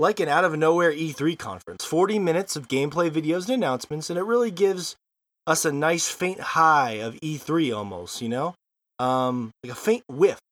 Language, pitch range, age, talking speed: English, 135-195 Hz, 20-39, 190 wpm